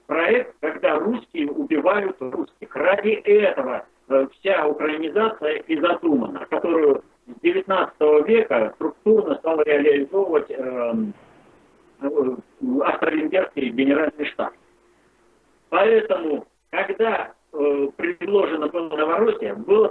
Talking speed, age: 95 wpm, 50-69